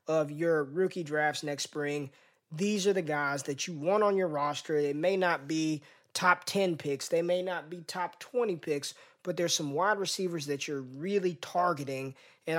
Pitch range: 150-185 Hz